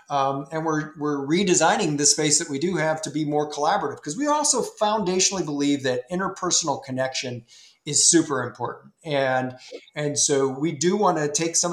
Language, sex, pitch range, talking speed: English, male, 135-165 Hz, 180 wpm